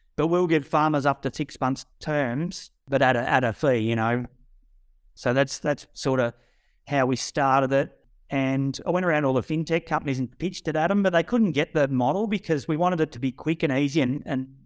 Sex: male